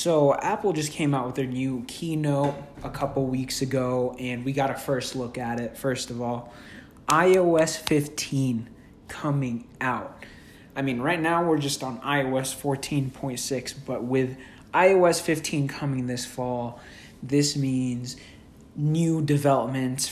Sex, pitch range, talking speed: male, 130-150 Hz, 145 wpm